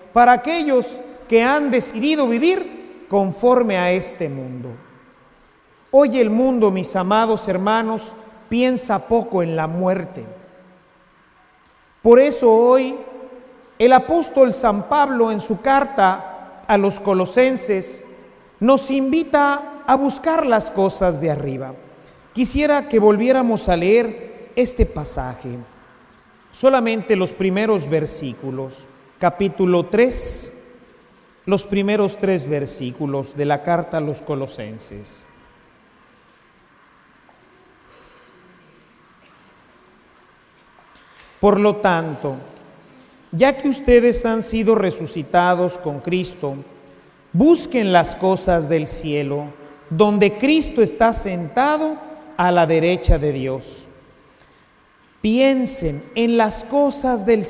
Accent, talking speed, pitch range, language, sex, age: Mexican, 100 wpm, 165-250 Hz, Spanish, male, 40-59